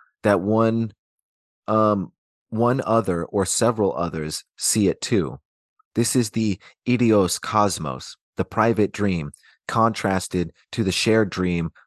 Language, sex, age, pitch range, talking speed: English, male, 30-49, 90-110 Hz, 120 wpm